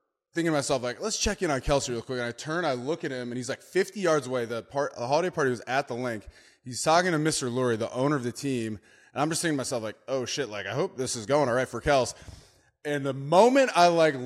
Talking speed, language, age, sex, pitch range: 280 wpm, English, 20-39, male, 115-150 Hz